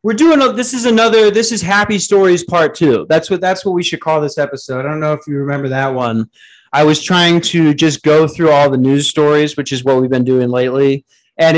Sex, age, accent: male, 30-49, American